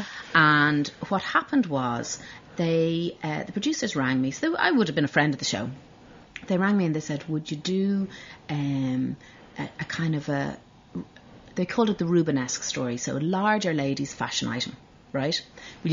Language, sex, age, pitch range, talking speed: English, female, 30-49, 140-185 Hz, 185 wpm